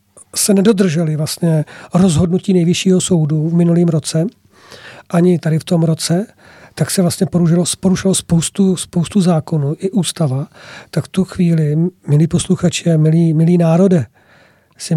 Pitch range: 150-190 Hz